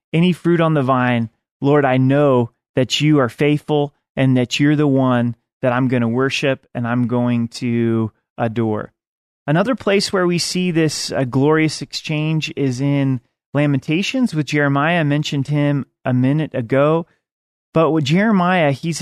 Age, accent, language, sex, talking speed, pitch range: 30-49, American, English, male, 160 wpm, 125-155 Hz